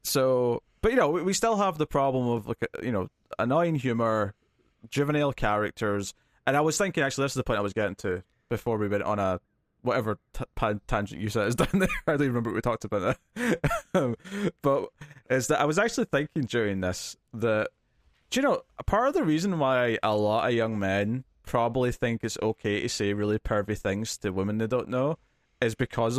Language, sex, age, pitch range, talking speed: English, male, 20-39, 105-140 Hz, 205 wpm